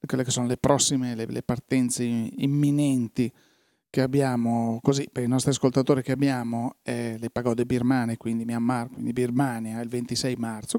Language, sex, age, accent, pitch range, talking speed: Italian, male, 40-59, native, 125-140 Hz, 160 wpm